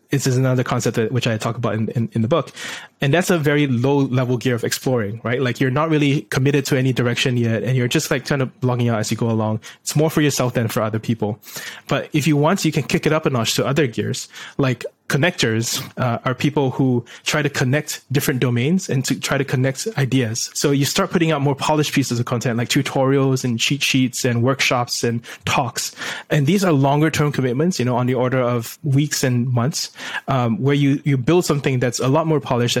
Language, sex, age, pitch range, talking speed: English, male, 20-39, 120-145 Hz, 235 wpm